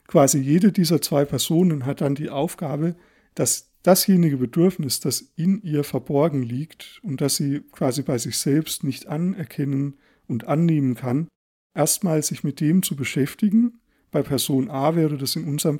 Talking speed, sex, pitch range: 160 wpm, male, 135-165 Hz